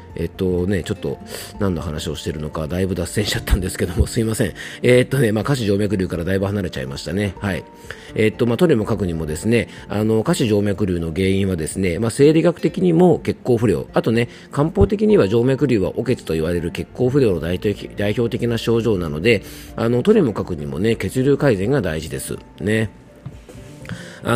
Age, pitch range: 40-59, 90-130 Hz